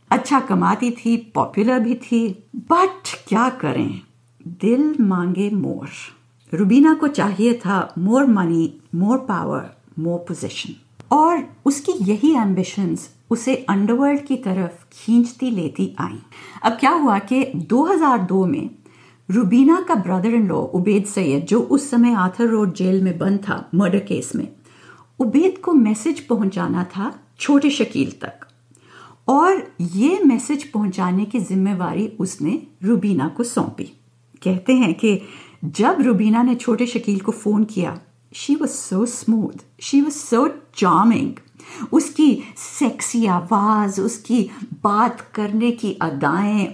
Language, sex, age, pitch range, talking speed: Hindi, female, 50-69, 195-255 Hz, 130 wpm